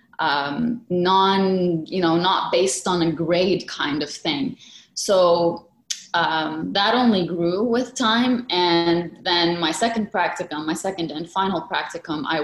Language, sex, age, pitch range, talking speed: English, female, 20-39, 160-195 Hz, 145 wpm